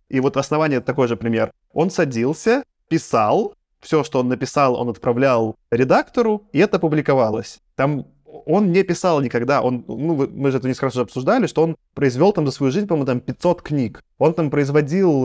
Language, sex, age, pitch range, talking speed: Russian, male, 20-39, 125-165 Hz, 185 wpm